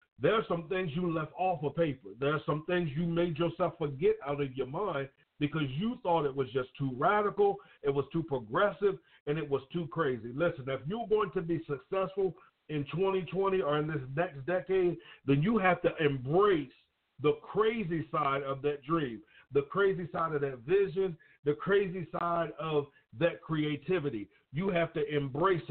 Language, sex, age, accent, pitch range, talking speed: English, male, 50-69, American, 145-185 Hz, 185 wpm